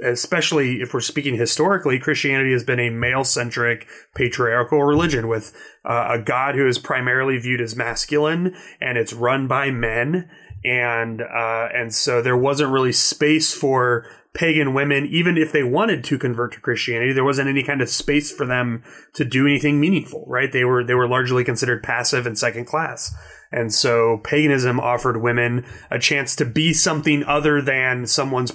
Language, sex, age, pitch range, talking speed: English, male, 30-49, 120-145 Hz, 170 wpm